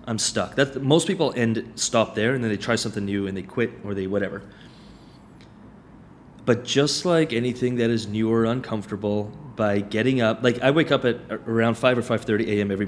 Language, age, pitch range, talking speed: English, 30-49, 105-130 Hz, 200 wpm